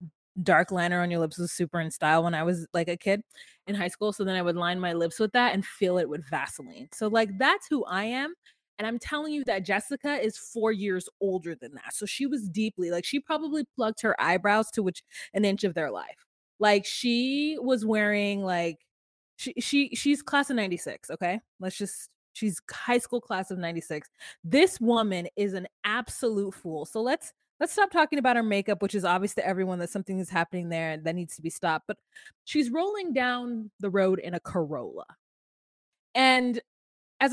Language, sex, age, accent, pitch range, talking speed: English, female, 20-39, American, 180-250 Hz, 205 wpm